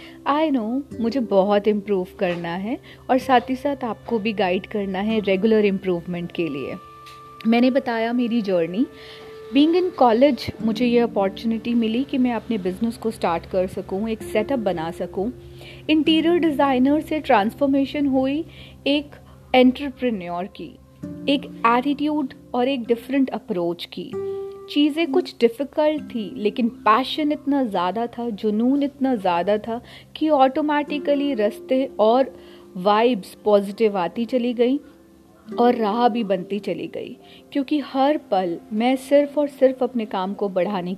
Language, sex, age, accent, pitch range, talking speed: Hindi, female, 40-59, native, 205-275 Hz, 140 wpm